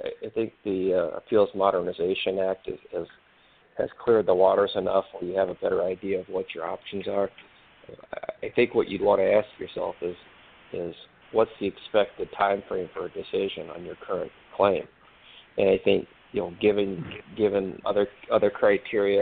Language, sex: English, male